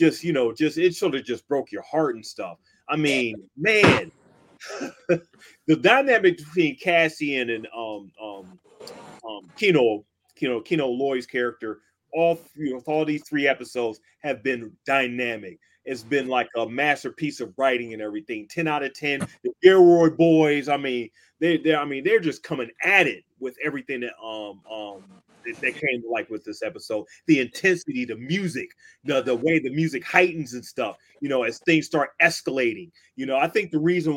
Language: English